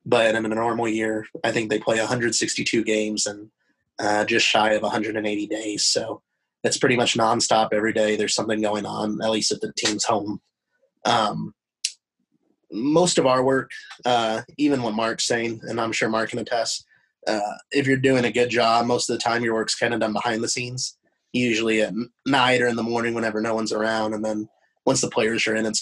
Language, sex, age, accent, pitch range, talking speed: English, male, 20-39, American, 110-120 Hz, 205 wpm